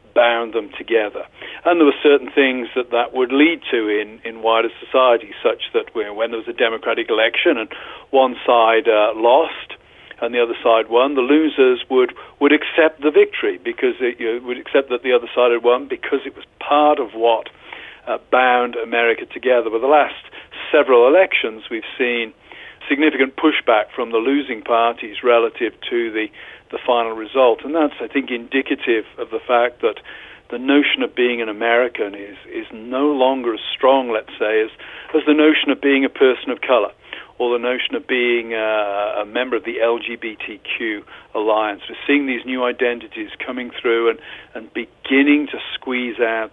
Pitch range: 120-160 Hz